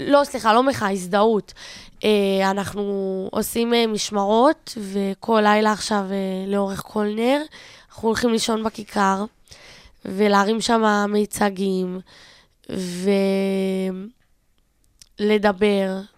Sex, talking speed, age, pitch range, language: female, 80 wpm, 20-39, 205-250 Hz, Hebrew